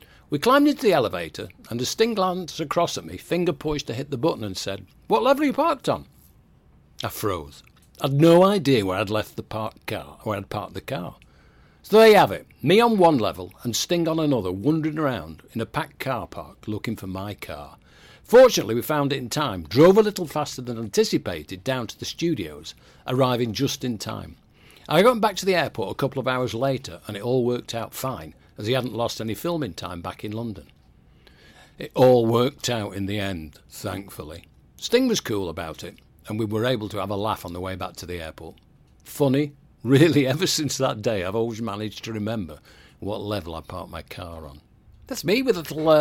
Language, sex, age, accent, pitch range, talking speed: English, male, 60-79, British, 105-150 Hz, 215 wpm